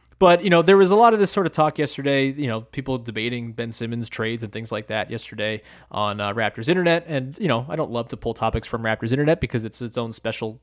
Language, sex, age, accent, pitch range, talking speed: English, male, 20-39, American, 115-145 Hz, 260 wpm